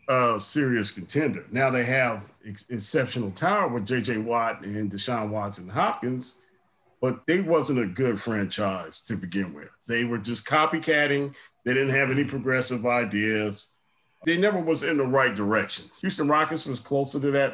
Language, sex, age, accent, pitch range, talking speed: English, male, 40-59, American, 115-145 Hz, 165 wpm